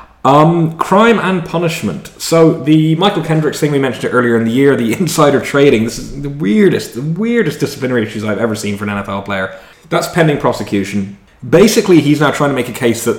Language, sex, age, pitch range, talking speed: English, male, 20-39, 105-145 Hz, 200 wpm